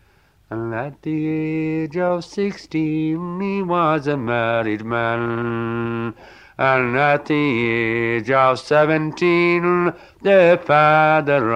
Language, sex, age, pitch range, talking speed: English, male, 60-79, 115-180 Hz, 100 wpm